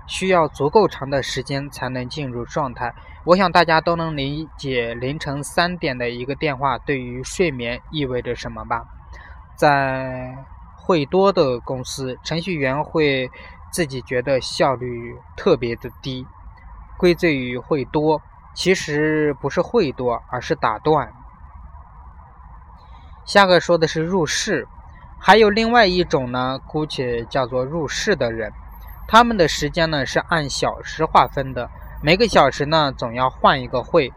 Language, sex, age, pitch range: Chinese, male, 20-39, 125-160 Hz